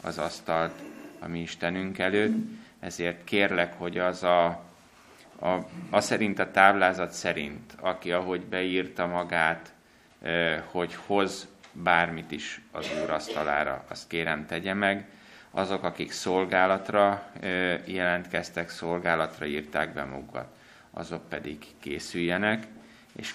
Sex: male